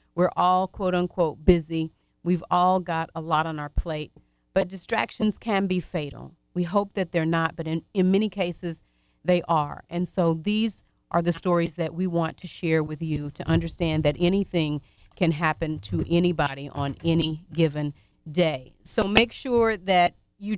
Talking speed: 175 wpm